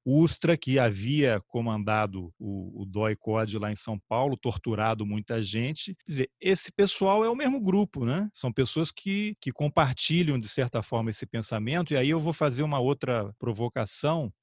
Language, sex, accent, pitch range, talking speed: Portuguese, male, Brazilian, 115-155 Hz, 170 wpm